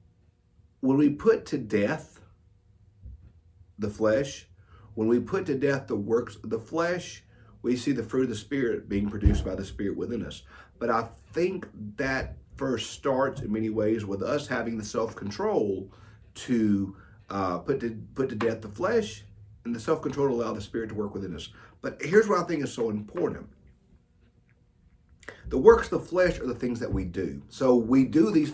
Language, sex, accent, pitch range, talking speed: English, male, American, 100-140 Hz, 185 wpm